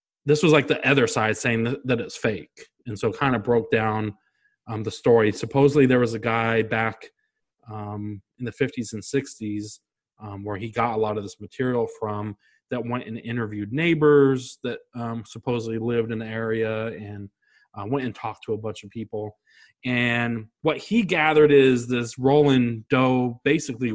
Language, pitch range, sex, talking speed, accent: English, 110-130 Hz, male, 185 wpm, American